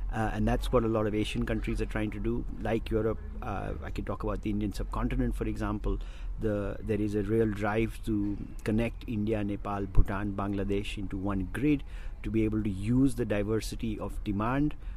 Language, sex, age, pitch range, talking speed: English, male, 50-69, 100-115 Hz, 195 wpm